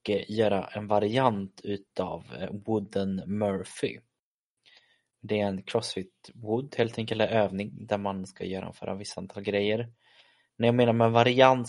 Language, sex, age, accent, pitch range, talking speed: Swedish, male, 20-39, native, 95-110 Hz, 160 wpm